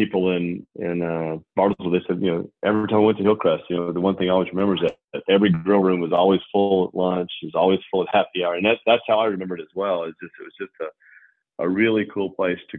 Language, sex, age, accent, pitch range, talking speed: English, male, 40-59, American, 80-90 Hz, 285 wpm